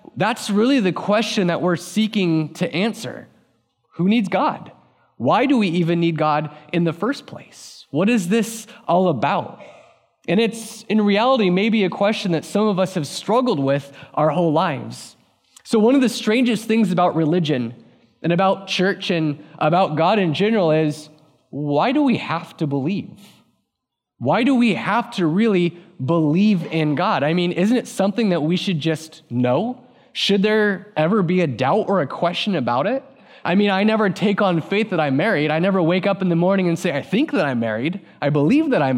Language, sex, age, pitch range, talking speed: English, male, 20-39, 165-220 Hz, 190 wpm